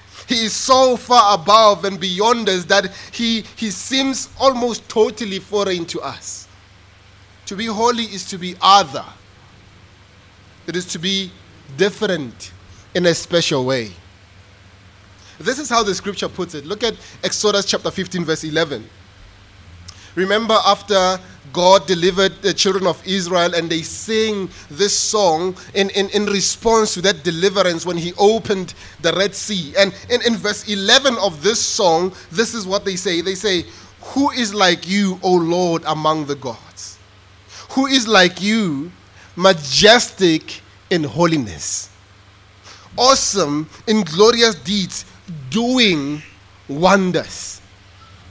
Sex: male